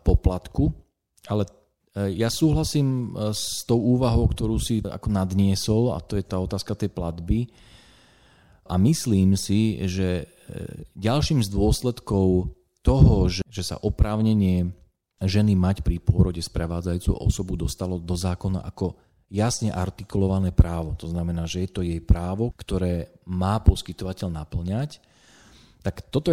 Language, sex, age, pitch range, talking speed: Slovak, male, 40-59, 90-105 Hz, 130 wpm